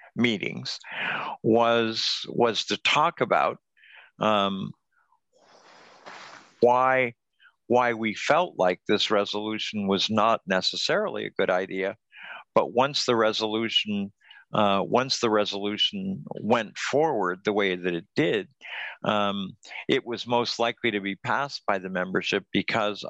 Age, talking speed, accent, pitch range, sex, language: 60-79, 120 wpm, American, 100-120 Hz, male, English